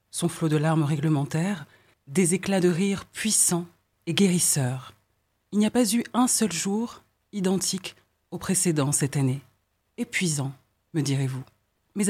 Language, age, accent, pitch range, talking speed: French, 30-49, French, 150-205 Hz, 145 wpm